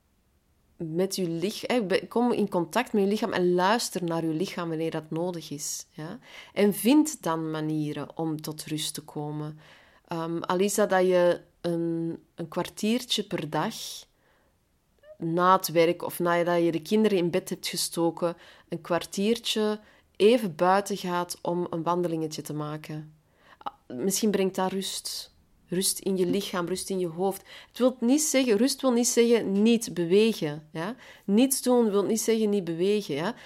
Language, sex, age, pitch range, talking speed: Dutch, female, 30-49, 170-220 Hz, 165 wpm